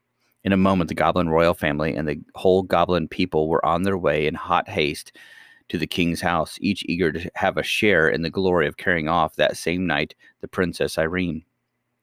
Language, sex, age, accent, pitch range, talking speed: English, male, 40-59, American, 85-100 Hz, 205 wpm